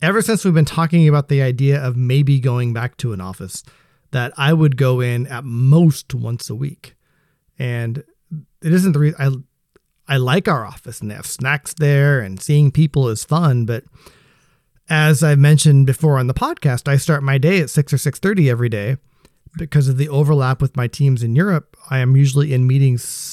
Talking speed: 205 wpm